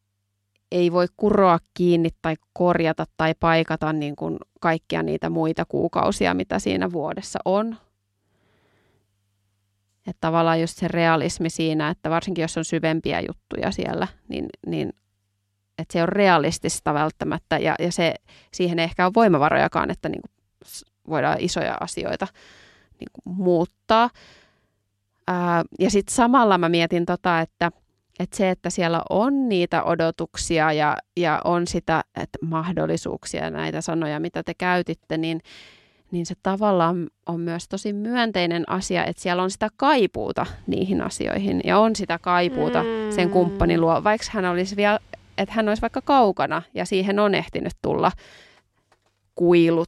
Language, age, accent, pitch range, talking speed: Finnish, 30-49, native, 155-185 Hz, 140 wpm